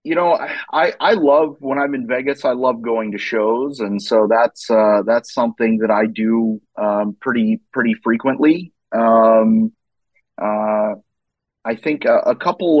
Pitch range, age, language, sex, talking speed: 120-165 Hz, 30-49, English, male, 160 wpm